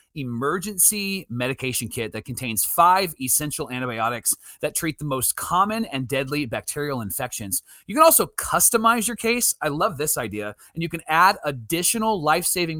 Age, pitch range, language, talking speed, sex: 30-49, 125-175 Hz, English, 160 wpm, male